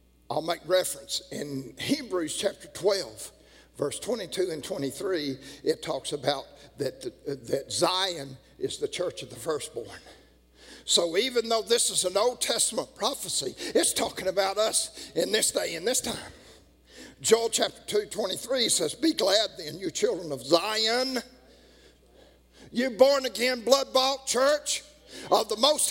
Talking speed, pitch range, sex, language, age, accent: 145 wpm, 180-290 Hz, male, English, 50-69, American